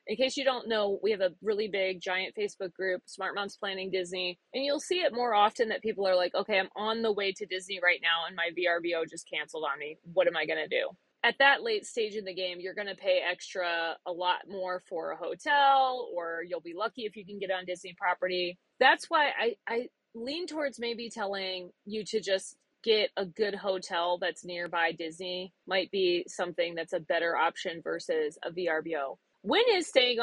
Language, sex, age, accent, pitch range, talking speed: English, female, 30-49, American, 185-260 Hz, 215 wpm